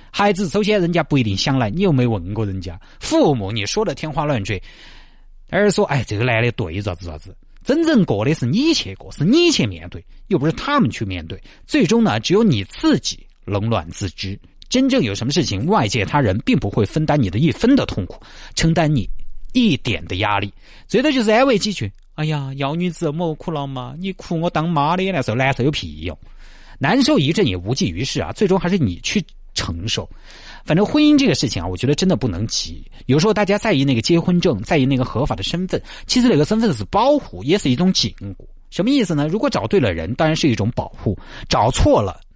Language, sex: Chinese, male